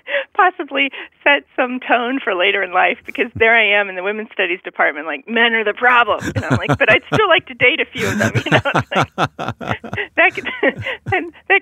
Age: 40-59